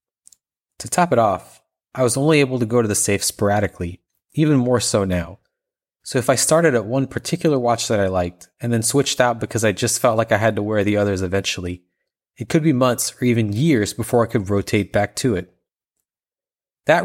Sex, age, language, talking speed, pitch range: male, 30-49, English, 210 wpm, 100-125 Hz